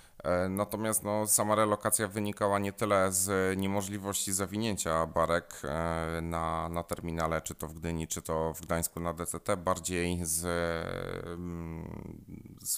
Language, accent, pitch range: Polish, native, 80-90 Hz